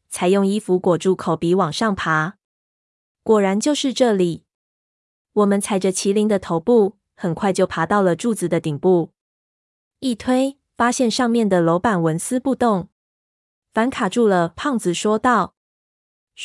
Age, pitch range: 20-39, 170-220 Hz